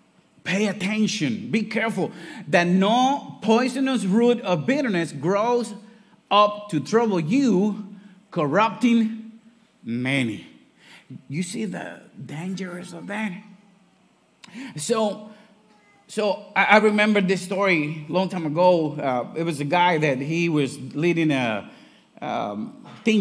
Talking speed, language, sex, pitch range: 115 wpm, English, male, 140-205 Hz